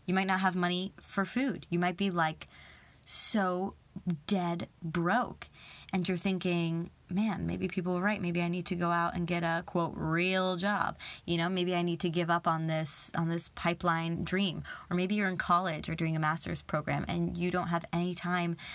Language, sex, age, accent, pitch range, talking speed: English, female, 20-39, American, 170-195 Hz, 205 wpm